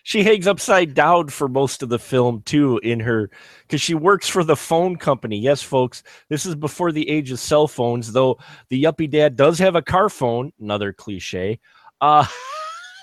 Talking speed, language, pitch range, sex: 190 wpm, English, 115-165 Hz, male